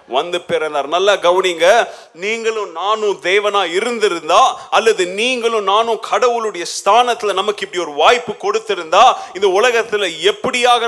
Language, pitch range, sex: Tamil, 195-290 Hz, male